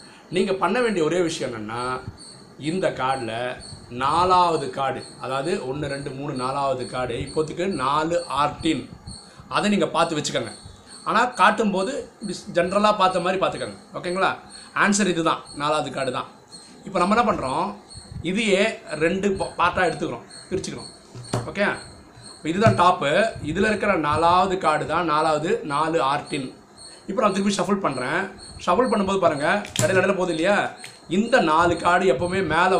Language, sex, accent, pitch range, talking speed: Tamil, male, native, 145-195 Hz, 130 wpm